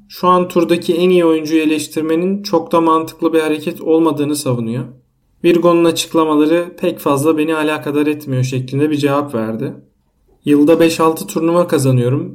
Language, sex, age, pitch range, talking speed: Turkish, male, 40-59, 140-165 Hz, 140 wpm